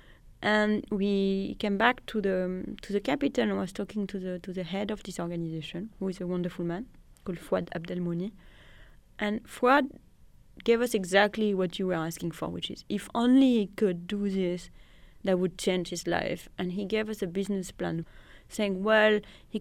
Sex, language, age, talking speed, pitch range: female, English, 30-49, 185 wpm, 175-210 Hz